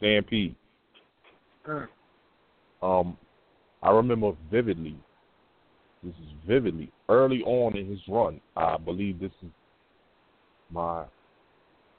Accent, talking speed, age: American, 90 wpm, 30-49